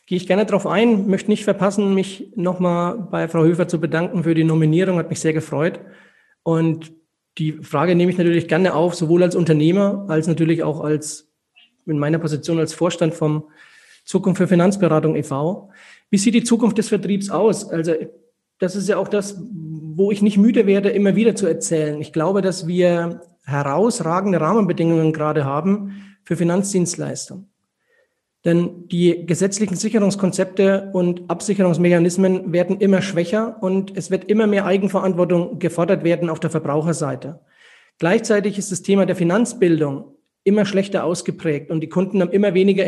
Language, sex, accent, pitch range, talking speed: German, male, German, 165-200 Hz, 160 wpm